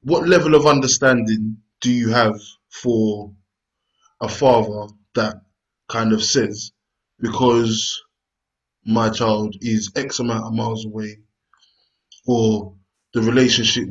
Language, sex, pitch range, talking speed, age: English, male, 105-125 Hz, 110 wpm, 20-39